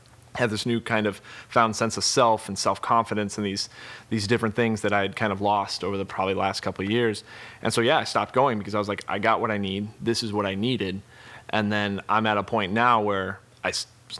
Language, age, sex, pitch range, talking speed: English, 20-39, male, 100-115 Hz, 250 wpm